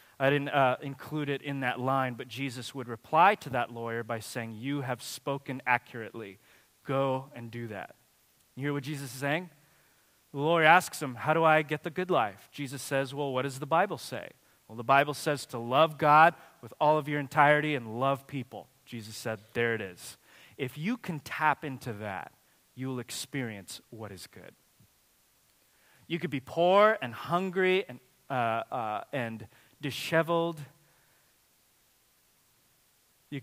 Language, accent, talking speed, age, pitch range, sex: English, American, 165 wpm, 30-49, 130-160 Hz, male